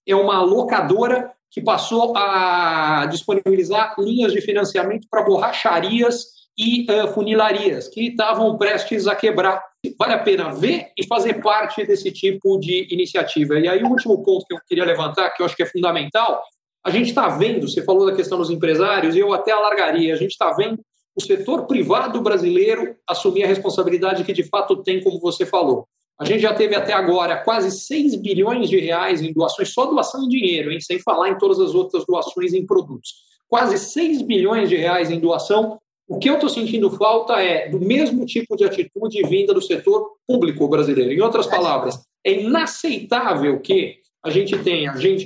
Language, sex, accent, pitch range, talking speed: Portuguese, male, Brazilian, 190-320 Hz, 180 wpm